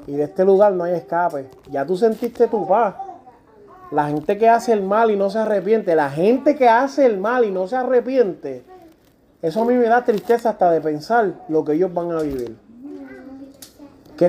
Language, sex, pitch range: Spanish, male, 165-235 Hz